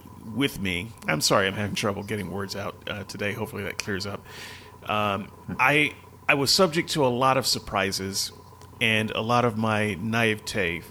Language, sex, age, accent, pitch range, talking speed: English, male, 40-59, American, 105-140 Hz, 175 wpm